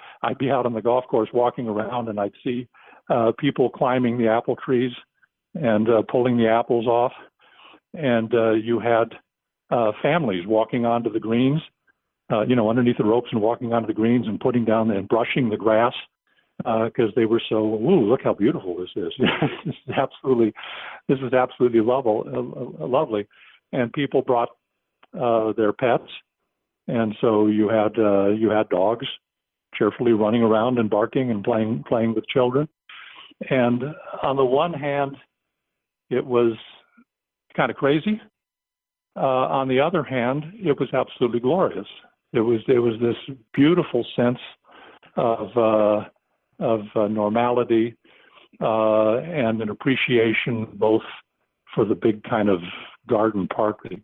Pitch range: 110-125 Hz